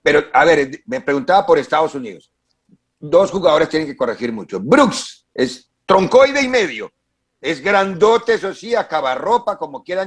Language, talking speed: English, 160 wpm